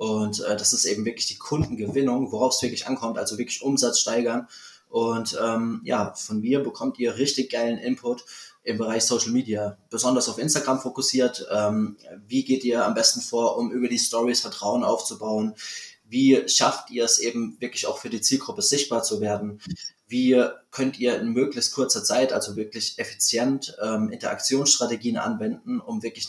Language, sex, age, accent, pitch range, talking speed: German, male, 20-39, German, 115-130 Hz, 170 wpm